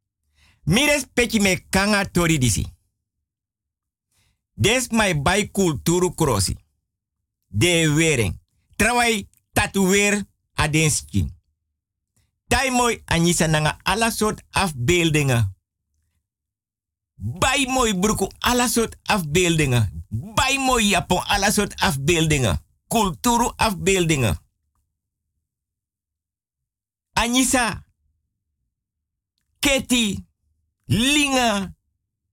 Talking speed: 70 wpm